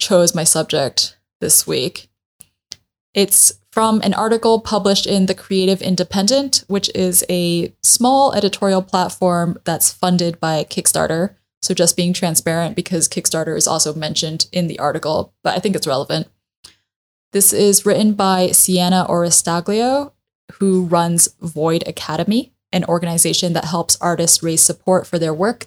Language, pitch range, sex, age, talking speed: English, 165-195 Hz, female, 10-29, 145 wpm